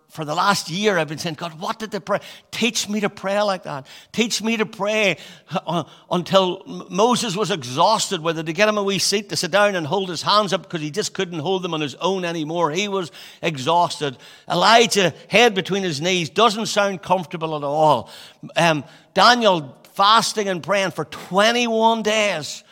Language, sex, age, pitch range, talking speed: English, male, 60-79, 155-210 Hz, 190 wpm